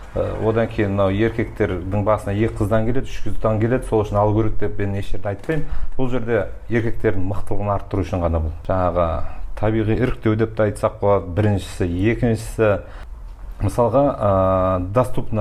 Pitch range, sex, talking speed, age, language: 100-120 Hz, male, 100 wpm, 40-59, Russian